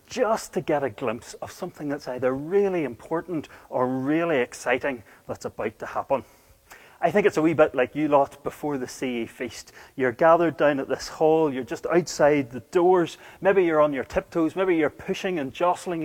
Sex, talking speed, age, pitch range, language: male, 195 wpm, 30-49, 130-175 Hz, English